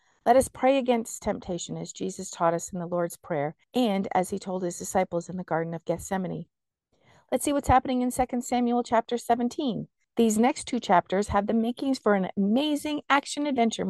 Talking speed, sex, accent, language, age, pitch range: 190 wpm, female, American, English, 50-69, 180-235 Hz